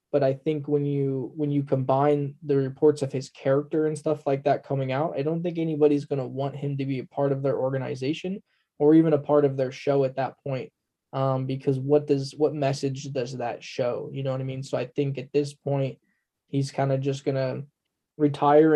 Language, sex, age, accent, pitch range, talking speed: English, male, 10-29, American, 135-145 Hz, 225 wpm